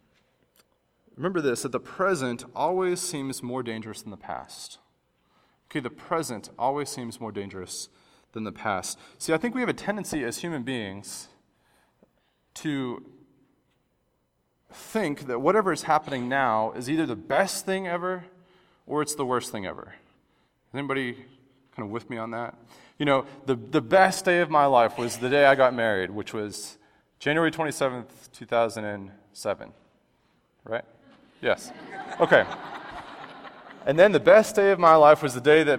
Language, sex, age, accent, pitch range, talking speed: English, male, 30-49, American, 125-175 Hz, 160 wpm